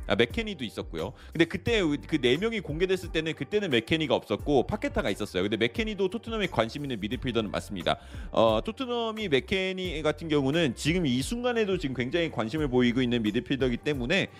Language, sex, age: Korean, male, 30-49